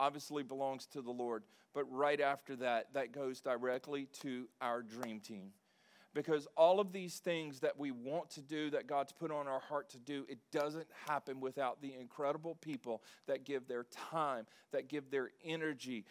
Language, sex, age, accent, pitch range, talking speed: English, male, 40-59, American, 135-160 Hz, 185 wpm